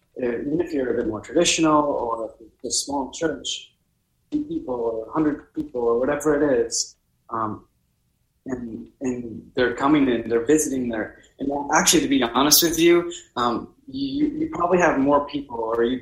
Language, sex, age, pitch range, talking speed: English, male, 20-39, 105-135 Hz, 165 wpm